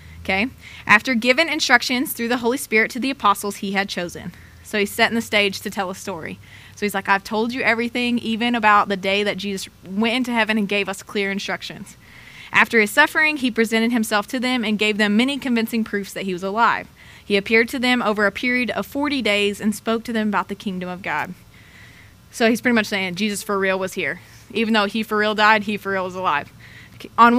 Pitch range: 200-235 Hz